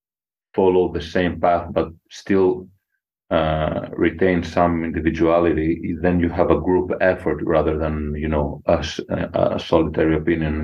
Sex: male